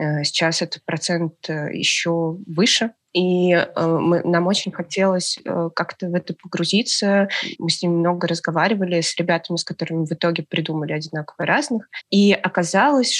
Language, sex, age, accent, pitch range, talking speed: Russian, female, 20-39, native, 165-190 Hz, 130 wpm